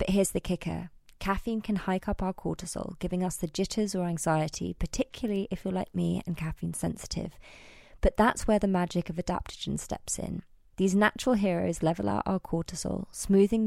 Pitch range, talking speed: 165-195 Hz, 180 wpm